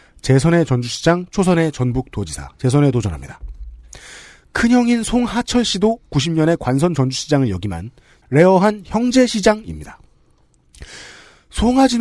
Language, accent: Korean, native